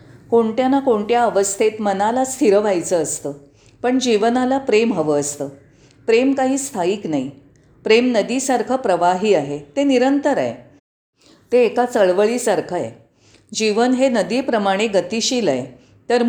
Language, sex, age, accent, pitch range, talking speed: Marathi, female, 40-59, native, 150-235 Hz, 125 wpm